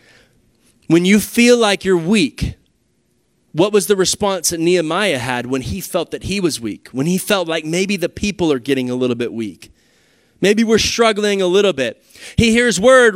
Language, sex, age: English, male, 20-39